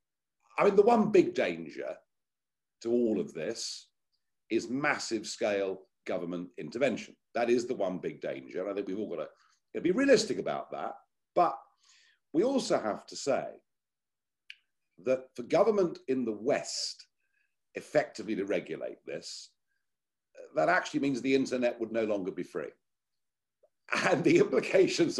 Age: 50-69